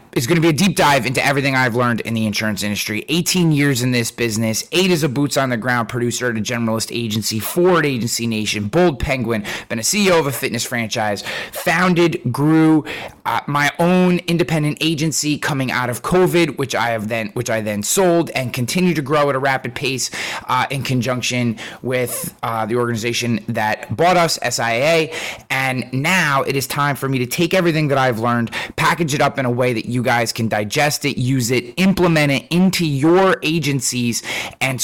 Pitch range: 120-155 Hz